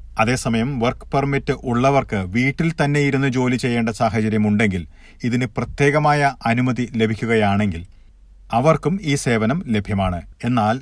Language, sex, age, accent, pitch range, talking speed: Malayalam, male, 40-59, native, 105-130 Hz, 105 wpm